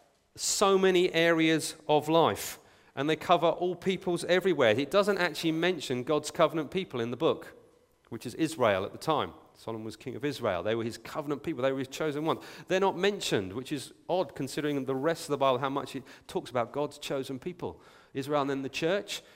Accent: British